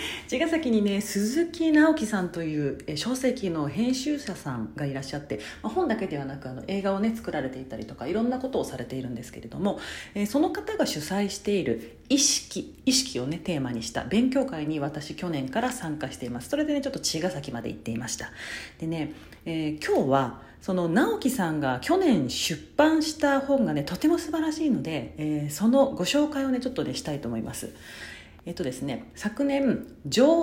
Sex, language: female, Japanese